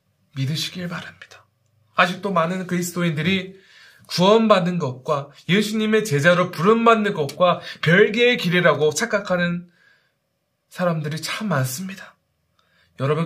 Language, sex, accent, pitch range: Korean, male, native, 150-210 Hz